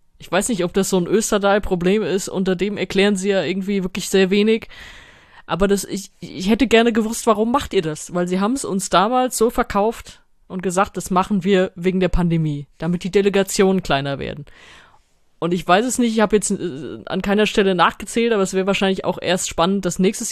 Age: 20-39